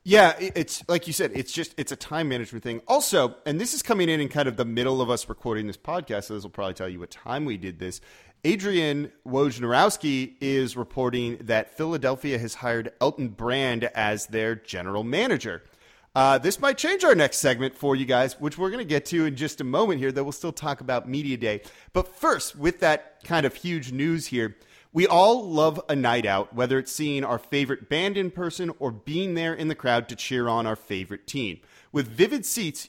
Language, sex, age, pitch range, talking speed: English, male, 30-49, 120-165 Hz, 215 wpm